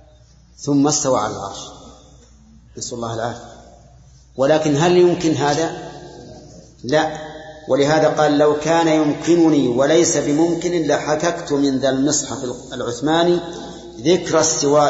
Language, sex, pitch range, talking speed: Arabic, male, 125-155 Hz, 105 wpm